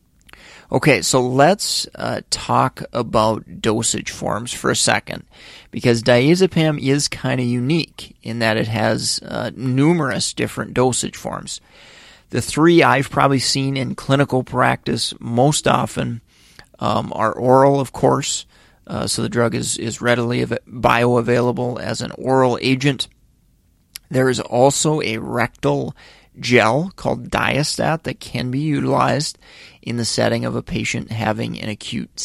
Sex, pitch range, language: male, 115-135 Hz, English